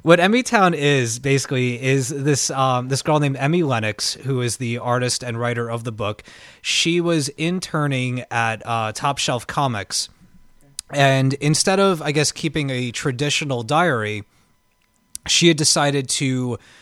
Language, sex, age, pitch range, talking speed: English, male, 20-39, 120-145 Hz, 155 wpm